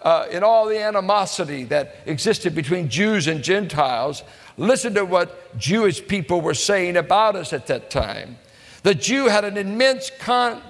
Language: English